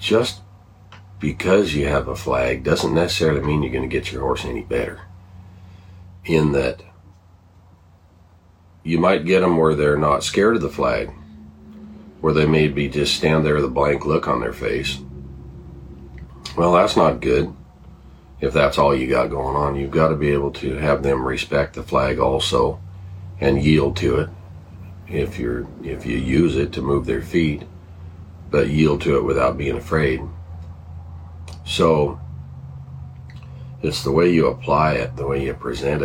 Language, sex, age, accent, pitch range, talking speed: English, male, 40-59, American, 70-85 Hz, 165 wpm